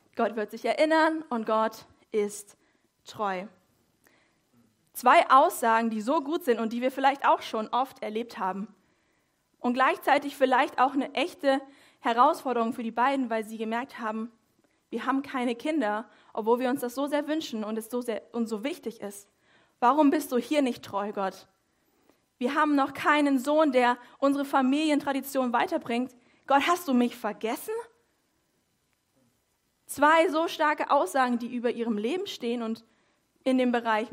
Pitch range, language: 230-285 Hz, German